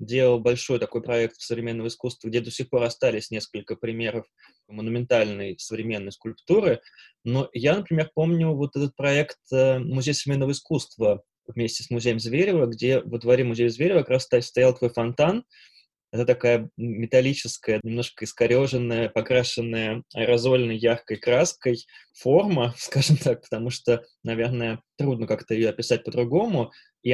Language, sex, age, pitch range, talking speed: Russian, male, 20-39, 115-140 Hz, 135 wpm